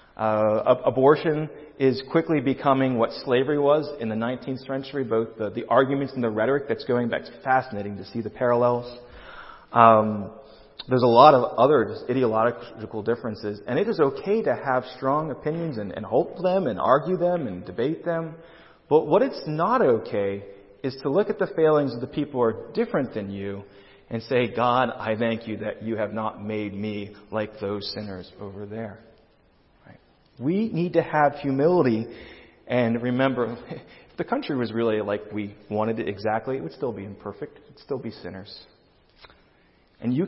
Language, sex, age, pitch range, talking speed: English, male, 30-49, 110-145 Hz, 180 wpm